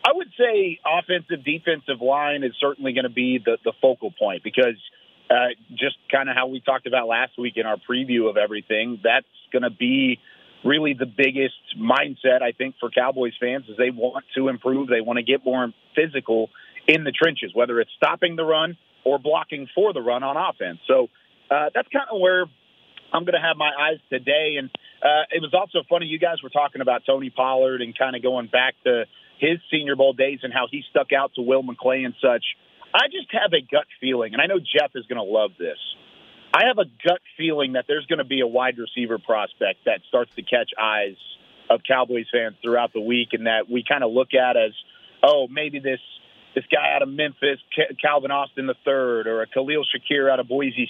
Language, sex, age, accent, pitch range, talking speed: English, male, 40-59, American, 125-160 Hz, 215 wpm